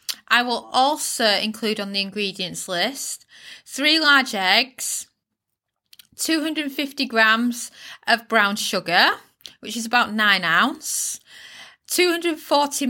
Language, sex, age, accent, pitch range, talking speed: English, female, 20-39, British, 215-270 Hz, 100 wpm